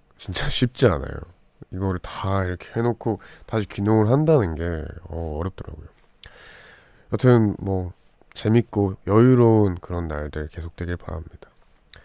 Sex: male